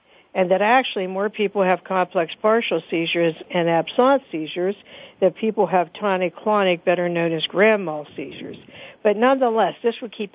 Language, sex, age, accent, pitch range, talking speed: English, female, 60-79, American, 175-215 Hz, 155 wpm